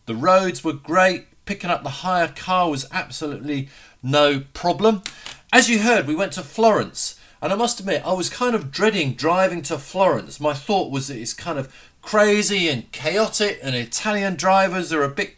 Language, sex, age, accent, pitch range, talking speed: English, male, 40-59, British, 140-190 Hz, 185 wpm